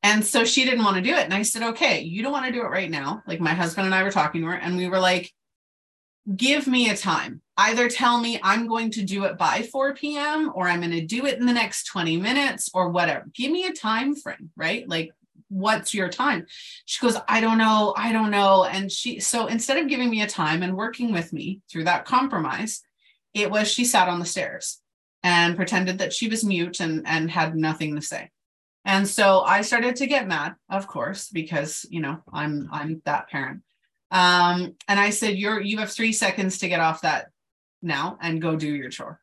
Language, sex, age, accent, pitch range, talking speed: English, female, 30-49, American, 170-245 Hz, 230 wpm